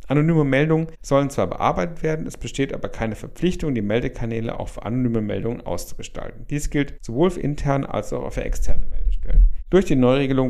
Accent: German